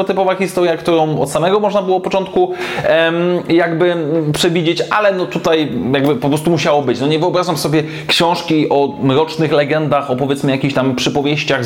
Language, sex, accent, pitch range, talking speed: Polish, male, native, 145-190 Hz, 160 wpm